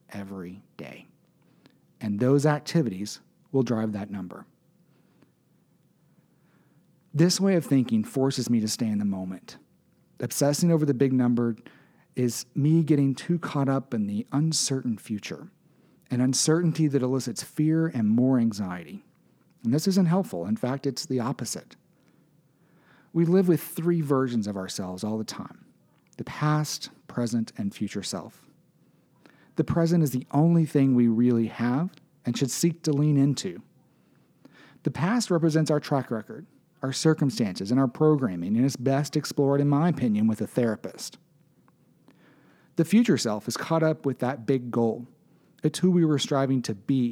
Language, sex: English, male